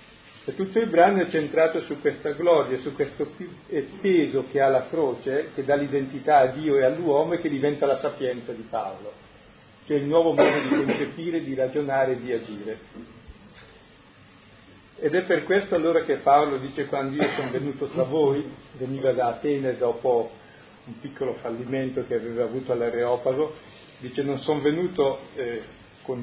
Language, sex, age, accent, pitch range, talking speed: Italian, male, 40-59, native, 130-150 Hz, 165 wpm